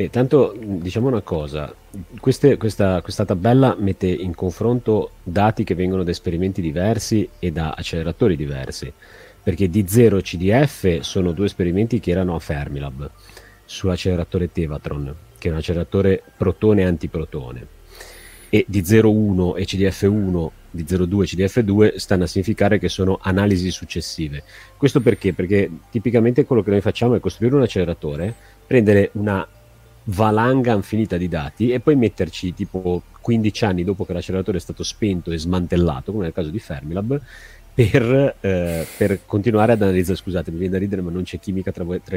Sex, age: male, 30-49